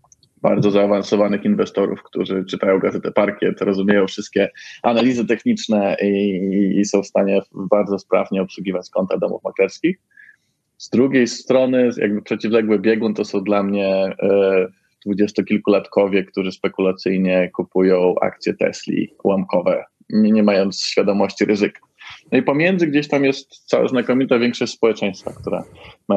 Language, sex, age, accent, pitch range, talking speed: Polish, male, 20-39, native, 100-115 Hz, 130 wpm